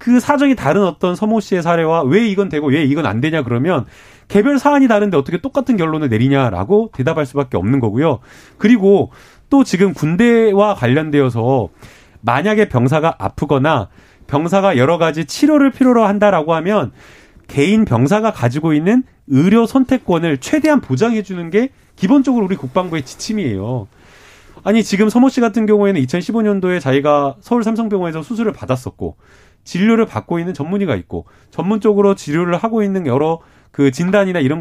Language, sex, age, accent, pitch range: Korean, male, 30-49, native, 135-210 Hz